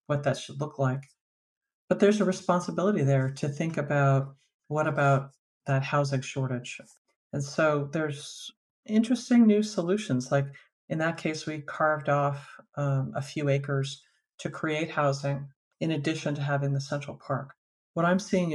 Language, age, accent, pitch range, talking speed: English, 50-69, American, 135-155 Hz, 155 wpm